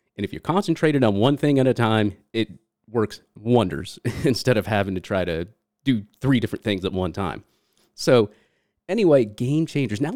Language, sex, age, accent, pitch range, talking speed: English, male, 30-49, American, 95-125 Hz, 185 wpm